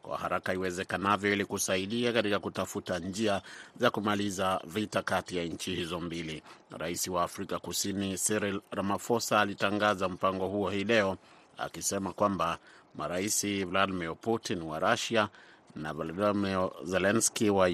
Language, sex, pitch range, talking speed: Swahili, male, 90-105 Hz, 125 wpm